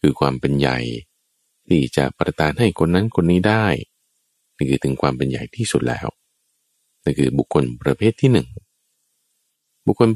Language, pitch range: Thai, 70-100 Hz